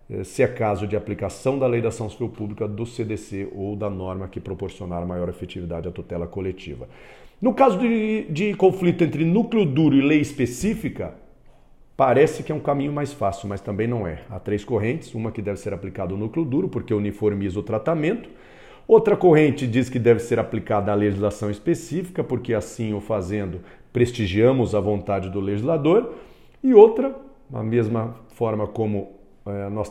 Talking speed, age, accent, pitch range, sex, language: 175 wpm, 40-59, Brazilian, 100-125 Hz, male, Portuguese